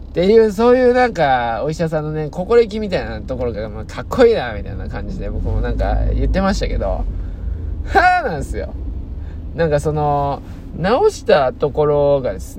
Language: Japanese